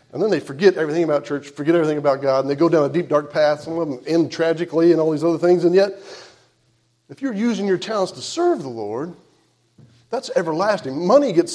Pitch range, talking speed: 165-225 Hz, 230 wpm